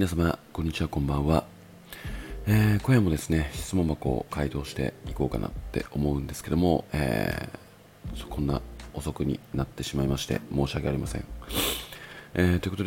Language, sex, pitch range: Japanese, male, 75-100 Hz